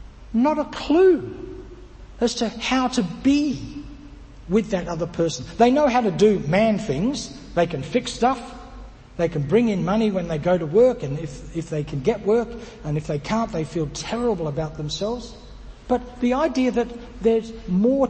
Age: 60-79